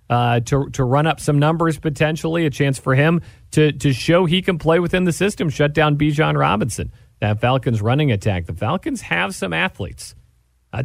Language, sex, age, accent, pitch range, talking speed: English, male, 40-59, American, 105-150 Hz, 200 wpm